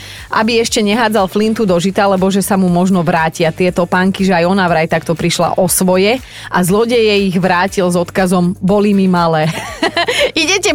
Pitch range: 185-230 Hz